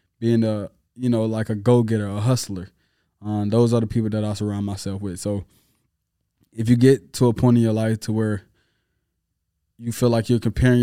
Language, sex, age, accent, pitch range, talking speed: English, male, 20-39, American, 105-120 Hz, 200 wpm